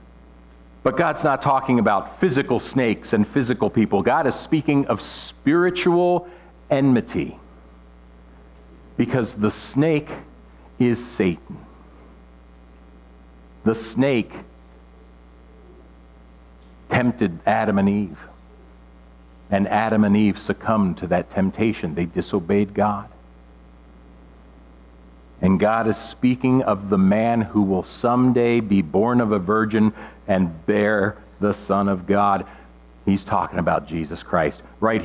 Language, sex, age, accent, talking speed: English, male, 50-69, American, 110 wpm